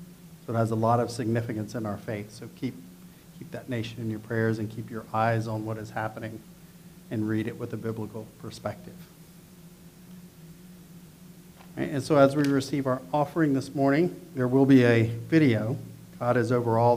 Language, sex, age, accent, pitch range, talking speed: English, male, 50-69, American, 115-170 Hz, 175 wpm